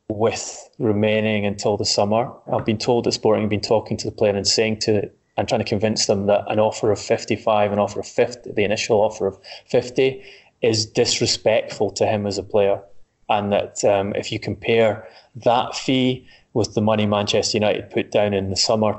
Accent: British